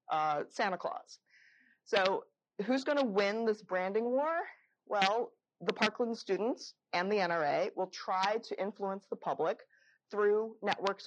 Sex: female